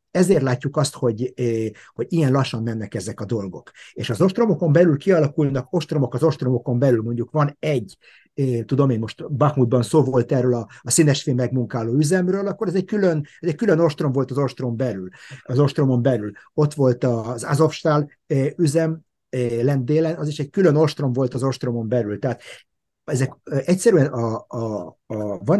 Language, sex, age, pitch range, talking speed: Hungarian, male, 50-69, 120-155 Hz, 180 wpm